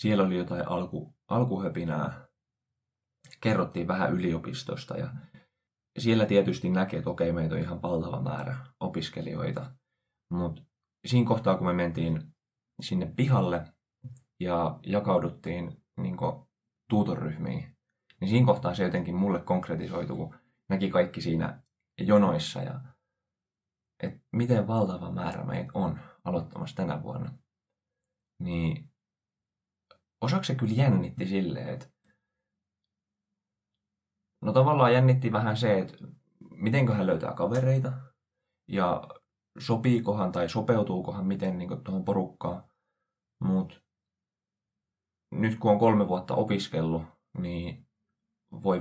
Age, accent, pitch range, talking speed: 20-39, native, 95-125 Hz, 110 wpm